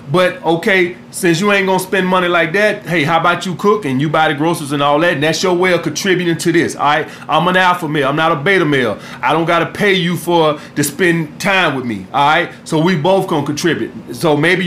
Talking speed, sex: 260 wpm, male